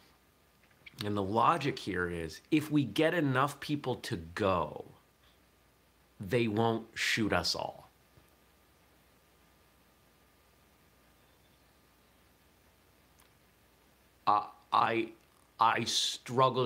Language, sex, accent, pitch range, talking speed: English, male, American, 85-120 Hz, 75 wpm